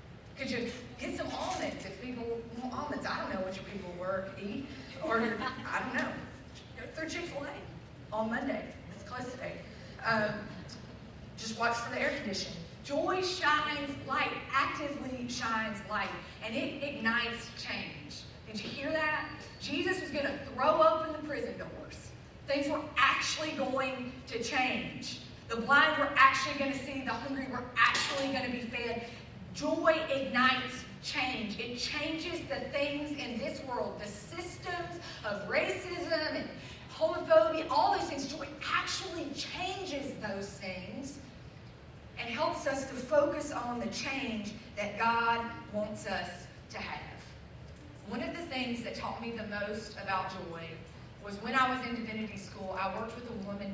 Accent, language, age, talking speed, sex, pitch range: American, English, 30-49, 160 wpm, female, 230-295 Hz